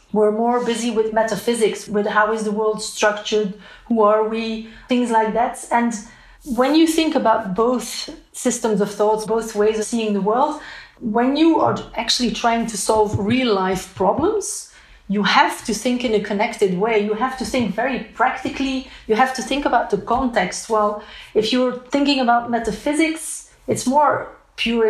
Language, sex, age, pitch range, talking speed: English, female, 30-49, 215-255 Hz, 170 wpm